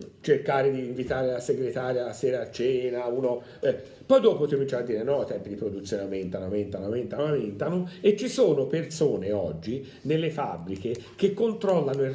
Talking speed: 180 wpm